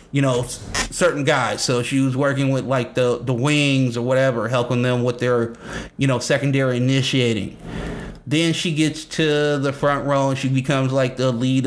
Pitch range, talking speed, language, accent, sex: 130-150 Hz, 185 wpm, English, American, male